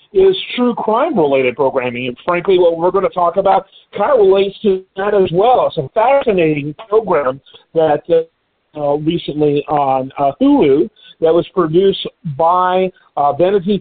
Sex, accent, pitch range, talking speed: male, American, 145-195 Hz, 150 wpm